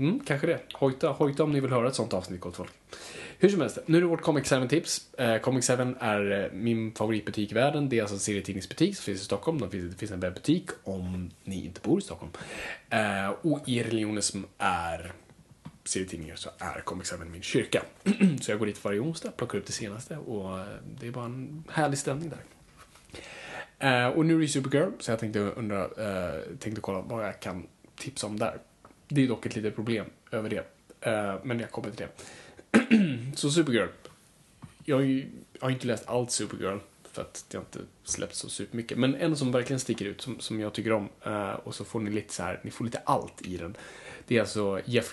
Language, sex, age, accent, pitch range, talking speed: Swedish, male, 20-39, Norwegian, 100-135 Hz, 210 wpm